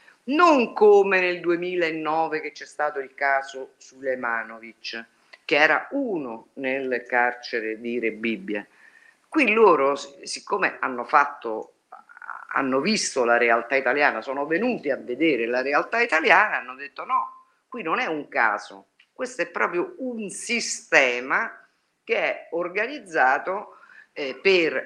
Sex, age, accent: female, 50-69, native